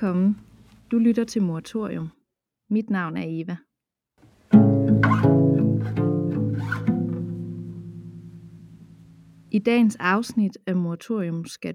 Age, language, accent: 30-49, Danish, native